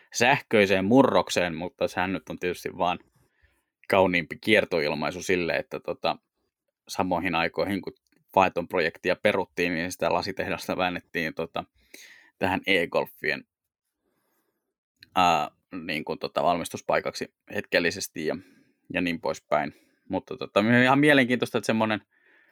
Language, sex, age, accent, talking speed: Finnish, male, 20-39, native, 110 wpm